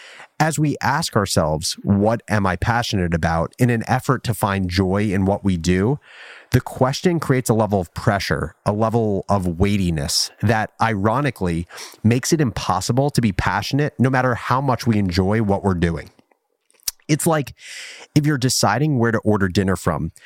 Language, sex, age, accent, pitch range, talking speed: English, male, 30-49, American, 100-130 Hz, 170 wpm